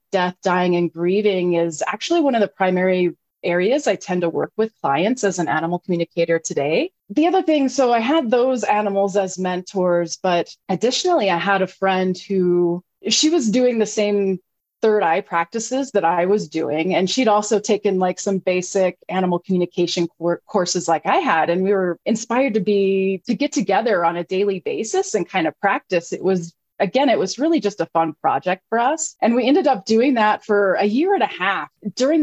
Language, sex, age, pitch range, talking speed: English, female, 30-49, 175-210 Hz, 195 wpm